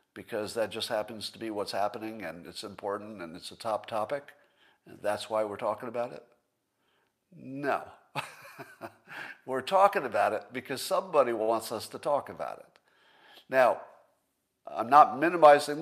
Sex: male